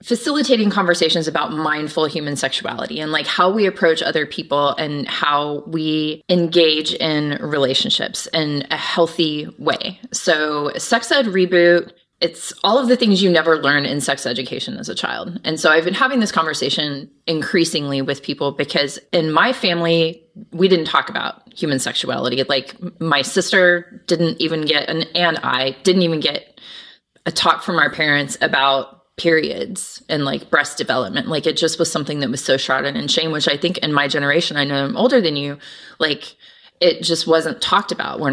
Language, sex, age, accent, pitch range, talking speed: English, female, 20-39, American, 145-175 Hz, 180 wpm